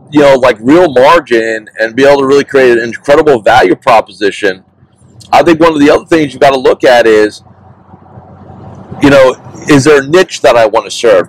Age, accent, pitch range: 40-59, American, 120-145 Hz